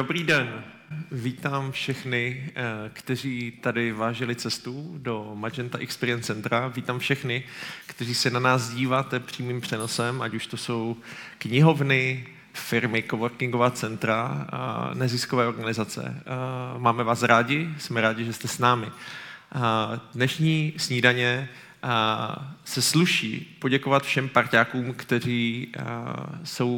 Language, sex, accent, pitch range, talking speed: Czech, male, native, 115-130 Hz, 110 wpm